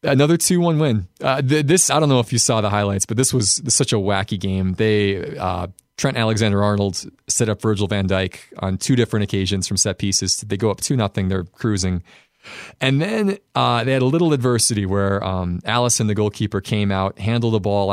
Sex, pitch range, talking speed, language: male, 100-135 Hz, 210 wpm, English